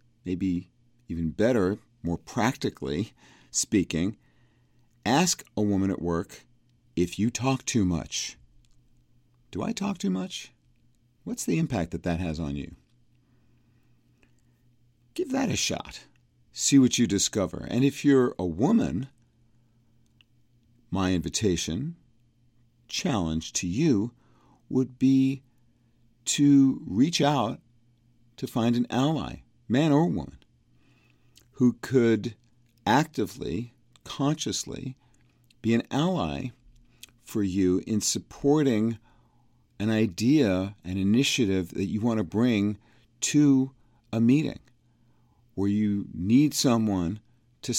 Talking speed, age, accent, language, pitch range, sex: 110 wpm, 50-69, American, English, 105-130 Hz, male